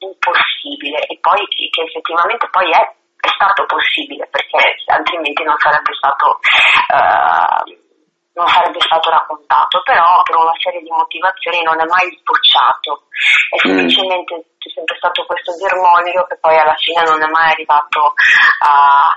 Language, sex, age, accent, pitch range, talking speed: Italian, female, 30-49, native, 155-180 Hz, 140 wpm